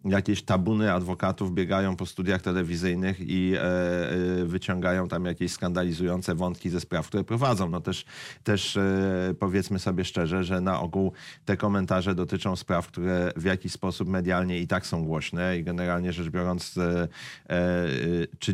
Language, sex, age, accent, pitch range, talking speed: Polish, male, 30-49, native, 90-110 Hz, 140 wpm